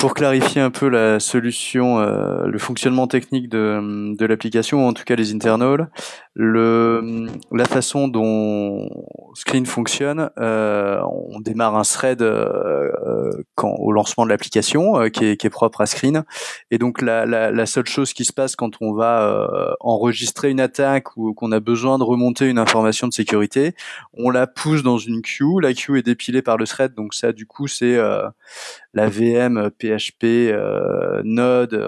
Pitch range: 110-130 Hz